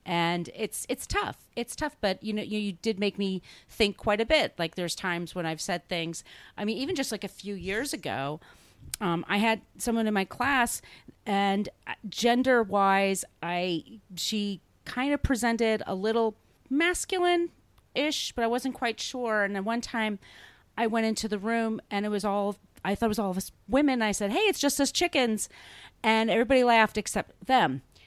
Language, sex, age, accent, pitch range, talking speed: English, female, 30-49, American, 175-225 Hz, 195 wpm